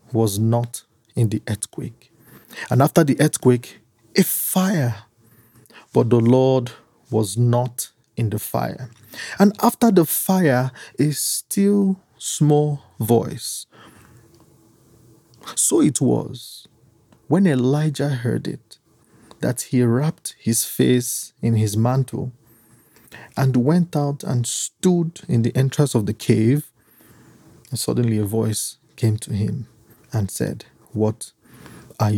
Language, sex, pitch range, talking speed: English, male, 115-155 Hz, 120 wpm